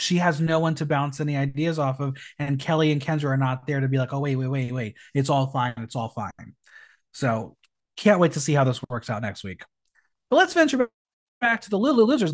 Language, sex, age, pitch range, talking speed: English, male, 30-49, 130-215 Hz, 245 wpm